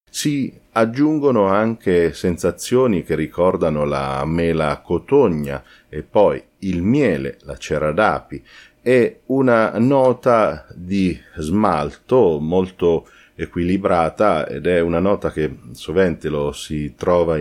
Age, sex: 40-59, male